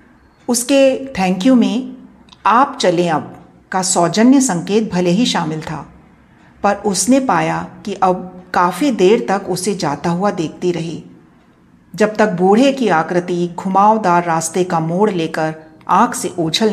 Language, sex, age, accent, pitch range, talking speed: Hindi, female, 40-59, native, 175-235 Hz, 145 wpm